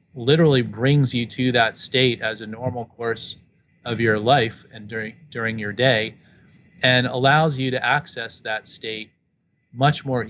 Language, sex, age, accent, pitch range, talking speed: English, male, 30-49, American, 115-135 Hz, 155 wpm